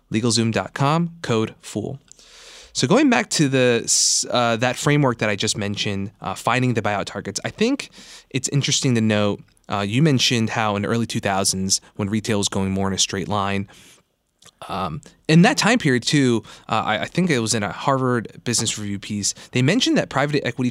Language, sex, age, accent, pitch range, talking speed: English, male, 20-39, American, 105-140 Hz, 195 wpm